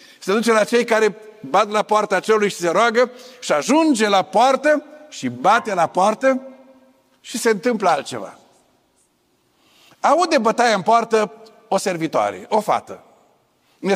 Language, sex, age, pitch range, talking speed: Romanian, male, 50-69, 195-250 Hz, 140 wpm